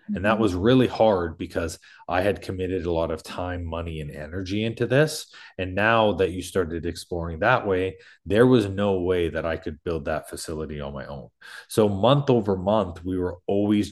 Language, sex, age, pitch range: English, male, 30-49, 85-105 Hz